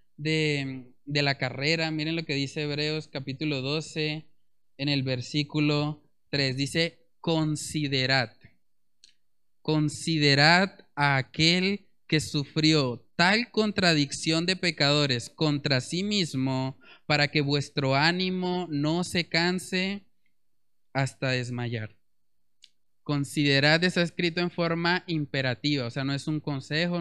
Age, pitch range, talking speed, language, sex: 20-39, 130-155 Hz, 110 wpm, Spanish, male